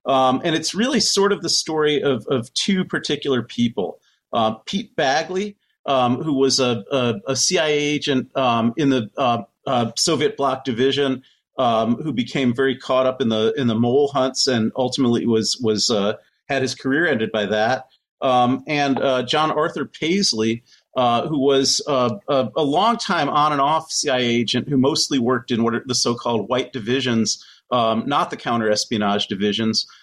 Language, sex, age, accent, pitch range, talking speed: English, male, 40-59, American, 120-145 Hz, 175 wpm